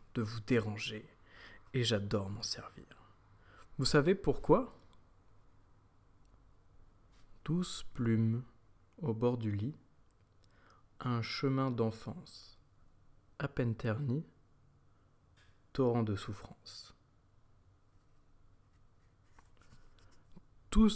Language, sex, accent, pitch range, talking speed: French, male, French, 100-125 Hz, 75 wpm